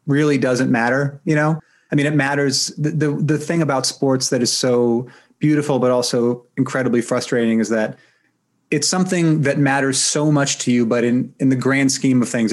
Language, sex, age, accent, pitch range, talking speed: English, male, 30-49, American, 120-145 Hz, 195 wpm